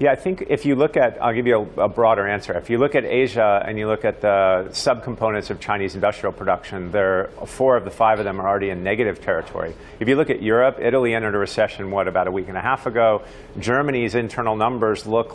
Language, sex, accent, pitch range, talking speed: English, male, American, 105-125 Hz, 240 wpm